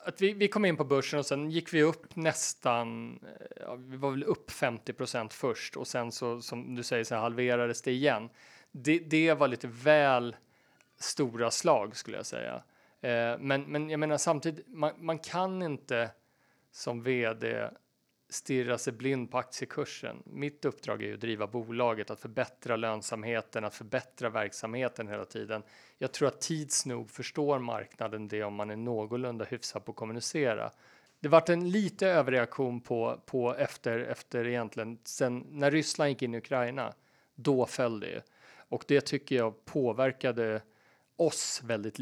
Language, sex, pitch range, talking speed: Swedish, male, 115-145 Hz, 160 wpm